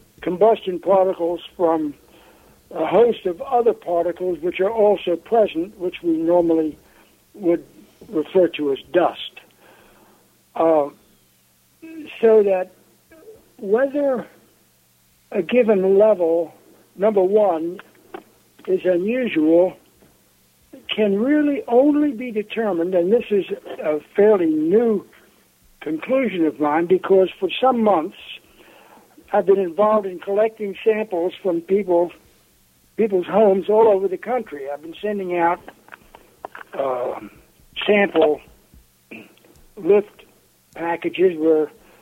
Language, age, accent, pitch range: English, 60-79, American, 170-215 Hz